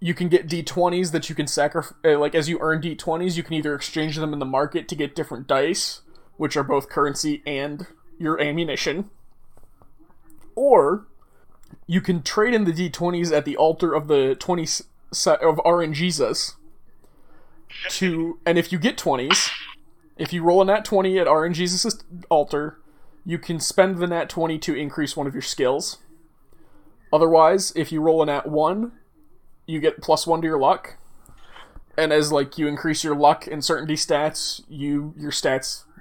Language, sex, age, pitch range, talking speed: English, male, 20-39, 150-175 Hz, 170 wpm